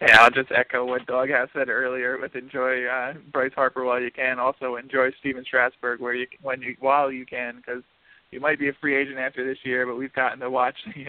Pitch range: 130-145 Hz